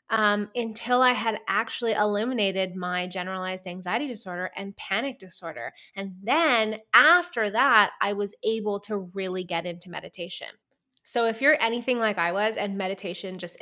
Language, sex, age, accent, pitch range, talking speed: English, female, 20-39, American, 185-235 Hz, 150 wpm